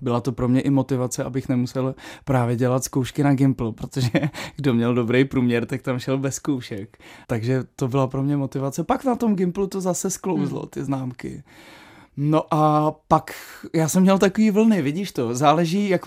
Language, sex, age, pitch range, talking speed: Czech, male, 20-39, 140-175 Hz, 185 wpm